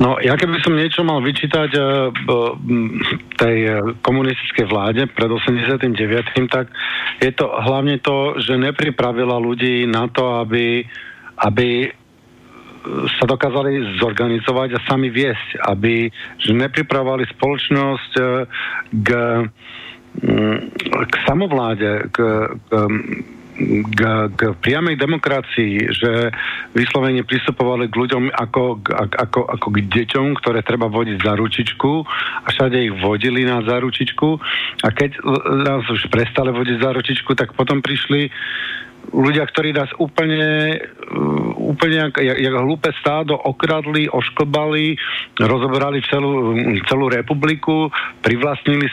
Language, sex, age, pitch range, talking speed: Slovak, male, 50-69, 115-140 Hz, 115 wpm